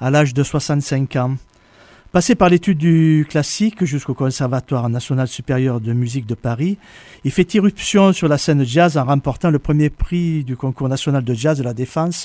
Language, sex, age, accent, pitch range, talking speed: French, male, 50-69, French, 135-175 Hz, 185 wpm